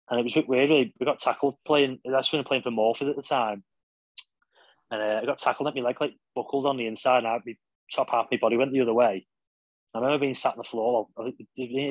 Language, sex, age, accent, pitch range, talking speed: English, male, 30-49, British, 110-135 Hz, 275 wpm